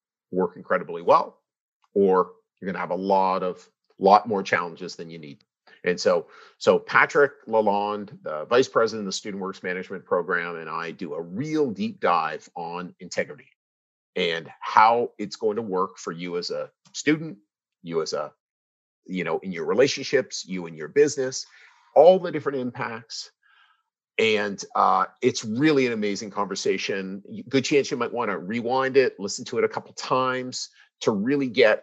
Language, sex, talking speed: English, male, 170 wpm